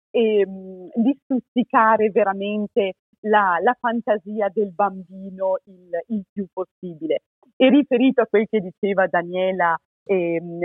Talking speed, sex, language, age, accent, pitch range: 120 wpm, female, Italian, 40-59, native, 180-215 Hz